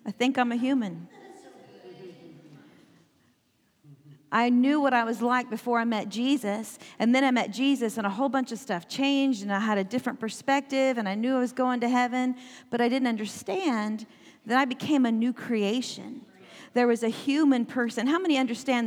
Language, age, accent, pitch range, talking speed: English, 40-59, American, 220-265 Hz, 190 wpm